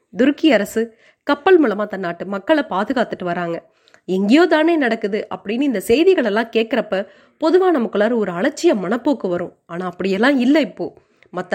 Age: 20-39